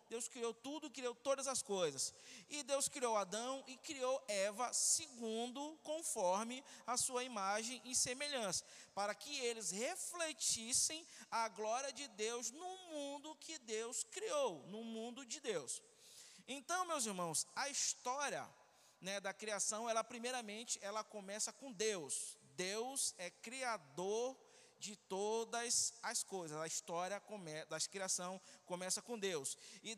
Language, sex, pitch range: Portuguese, male, 205-270 Hz